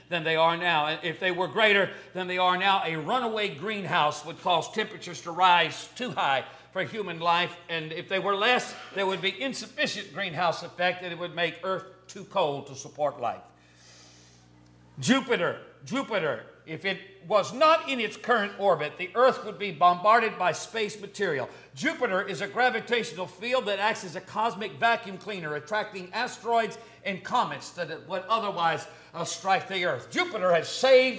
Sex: male